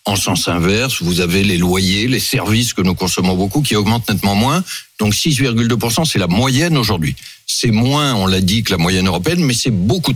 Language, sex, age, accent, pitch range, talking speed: French, male, 60-79, French, 100-130 Hz, 205 wpm